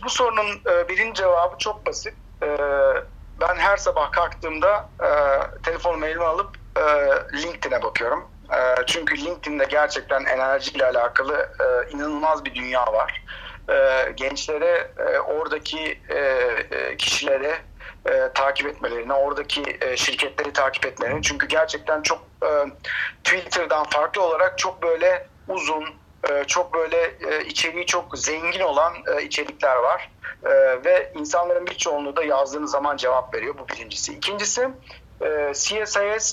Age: 50-69